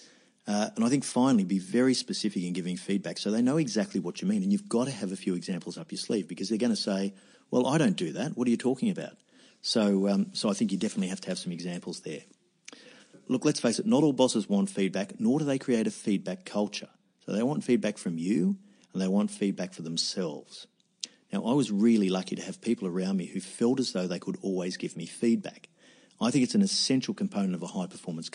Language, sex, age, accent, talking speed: English, male, 50-69, Australian, 240 wpm